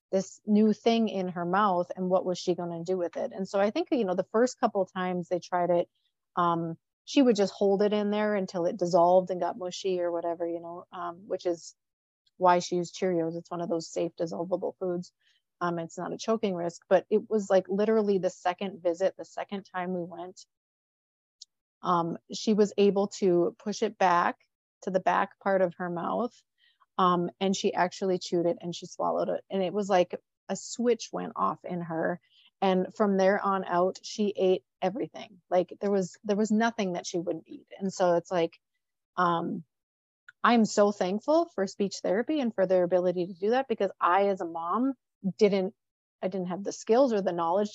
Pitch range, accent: 175-205 Hz, American